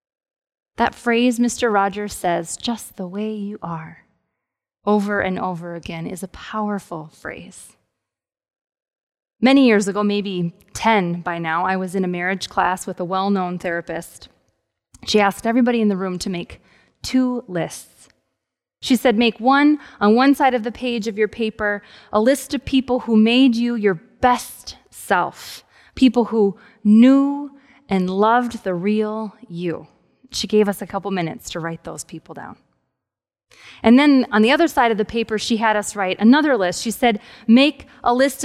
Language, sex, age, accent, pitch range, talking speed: English, female, 20-39, American, 195-250 Hz, 165 wpm